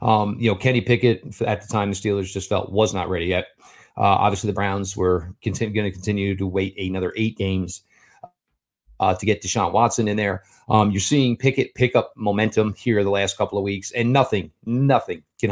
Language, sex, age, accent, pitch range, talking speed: English, male, 30-49, American, 100-130 Hz, 210 wpm